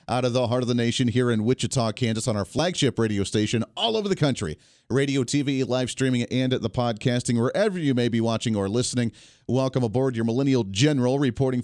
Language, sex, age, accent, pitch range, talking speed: English, male, 40-59, American, 120-150 Hz, 205 wpm